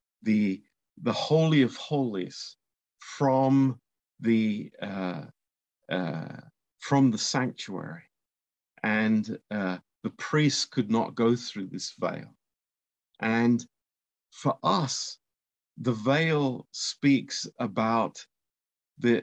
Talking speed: 95 wpm